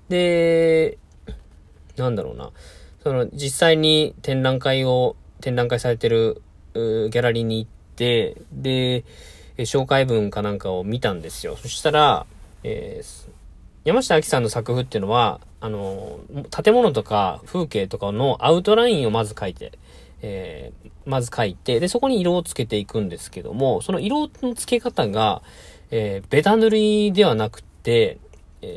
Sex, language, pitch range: male, Japanese, 105-165 Hz